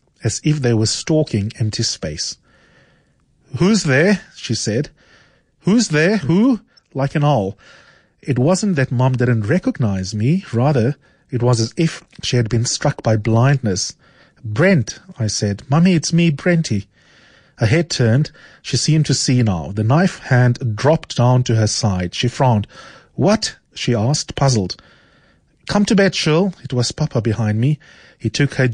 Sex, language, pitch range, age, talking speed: male, English, 115-150 Hz, 30-49, 160 wpm